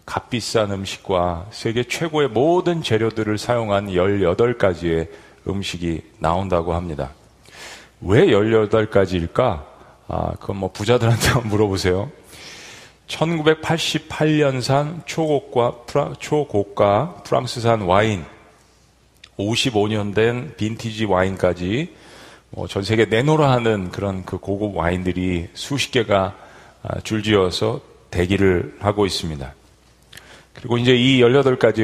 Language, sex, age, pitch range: Korean, male, 40-59, 95-125 Hz